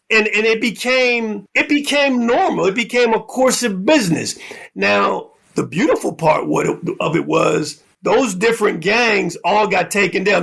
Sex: male